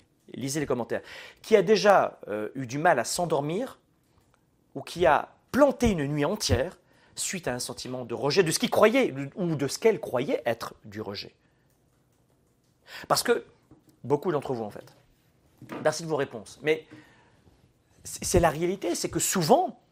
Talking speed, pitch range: 165 wpm, 135-225 Hz